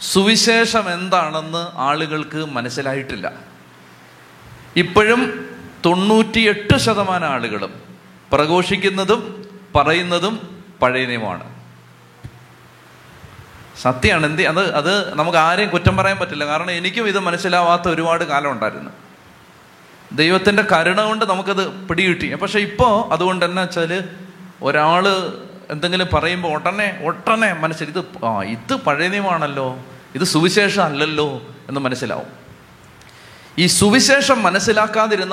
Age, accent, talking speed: 30-49, native, 90 wpm